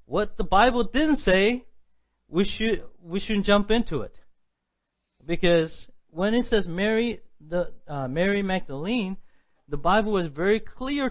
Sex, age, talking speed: male, 40-59, 140 wpm